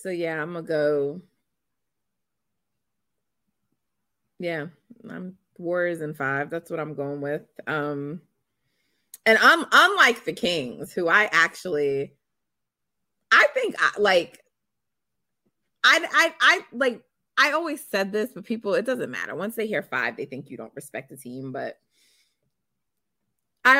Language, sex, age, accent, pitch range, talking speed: English, female, 20-39, American, 155-225 Hz, 135 wpm